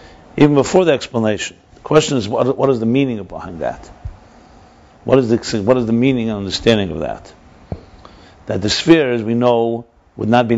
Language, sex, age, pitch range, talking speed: English, male, 50-69, 105-135 Hz, 195 wpm